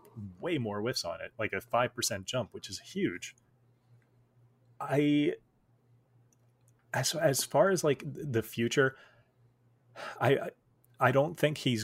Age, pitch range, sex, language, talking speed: 30-49, 105-120 Hz, male, English, 130 wpm